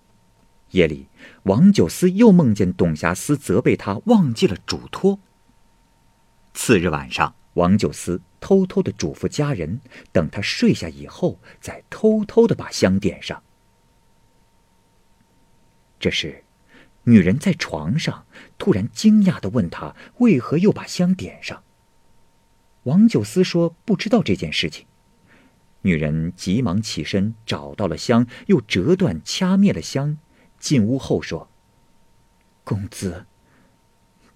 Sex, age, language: male, 50-69, Chinese